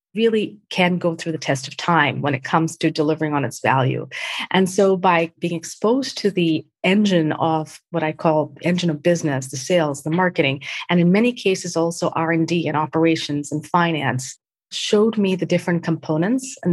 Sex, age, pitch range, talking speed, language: female, 40-59, 160-190 Hz, 185 wpm, English